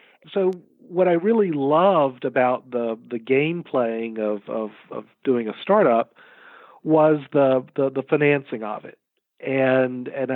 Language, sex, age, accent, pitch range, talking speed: English, male, 40-59, American, 120-155 Hz, 145 wpm